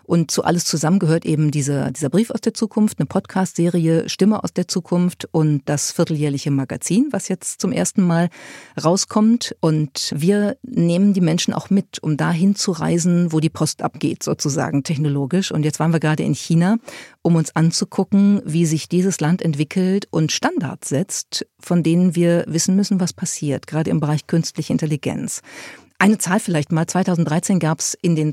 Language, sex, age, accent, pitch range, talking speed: German, female, 50-69, German, 155-195 Hz, 180 wpm